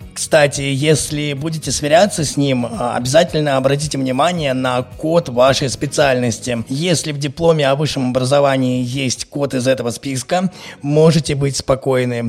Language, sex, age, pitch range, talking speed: Russian, male, 20-39, 135-160 Hz, 130 wpm